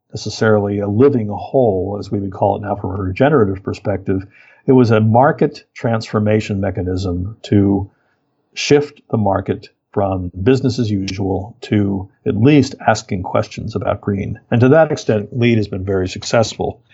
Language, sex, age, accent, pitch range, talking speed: English, male, 60-79, American, 100-120 Hz, 155 wpm